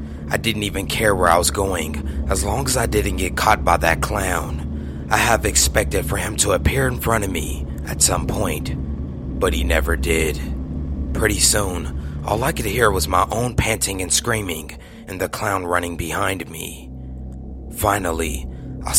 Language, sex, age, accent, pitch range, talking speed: English, male, 30-49, American, 65-95 Hz, 175 wpm